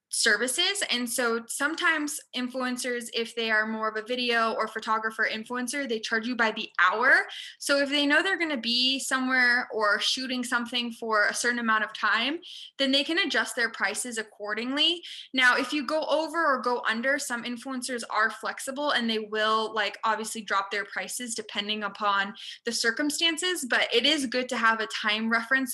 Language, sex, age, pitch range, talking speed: English, female, 20-39, 220-280 Hz, 185 wpm